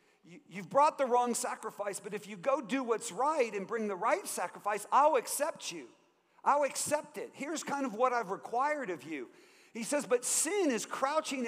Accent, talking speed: American, 195 wpm